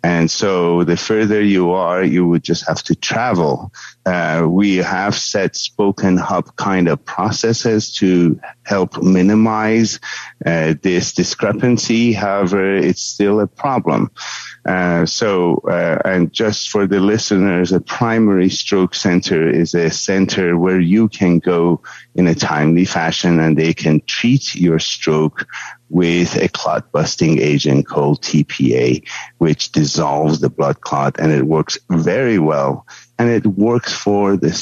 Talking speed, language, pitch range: 145 wpm, English, 80-100 Hz